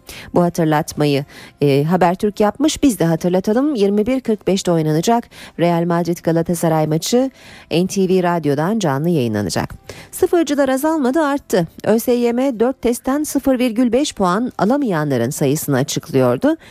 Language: Turkish